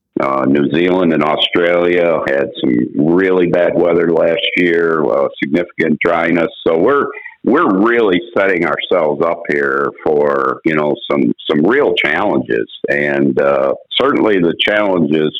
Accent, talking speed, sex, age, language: American, 135 wpm, male, 50-69, English